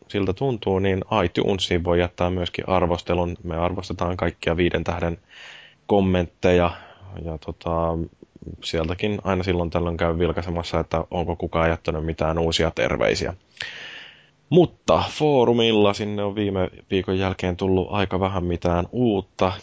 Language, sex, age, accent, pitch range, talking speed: Finnish, male, 20-39, native, 85-95 Hz, 125 wpm